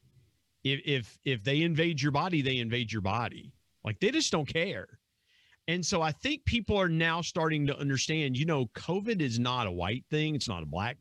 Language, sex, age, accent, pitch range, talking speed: English, male, 50-69, American, 105-145 Hz, 205 wpm